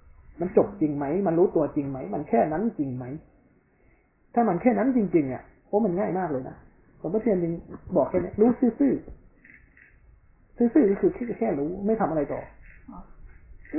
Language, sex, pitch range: Thai, male, 160-240 Hz